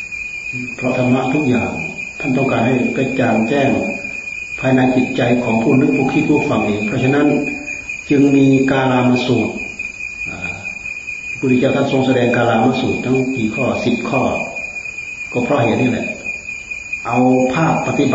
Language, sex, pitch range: Thai, male, 110-135 Hz